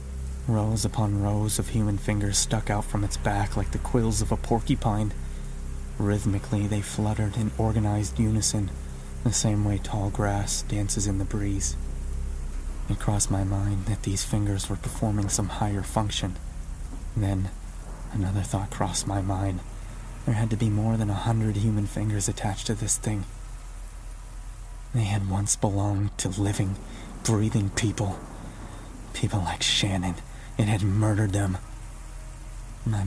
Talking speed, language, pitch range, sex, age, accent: 145 wpm, English, 100-115 Hz, male, 30-49, American